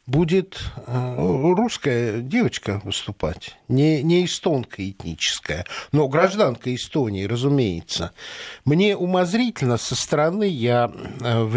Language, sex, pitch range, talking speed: Russian, male, 125-165 Hz, 95 wpm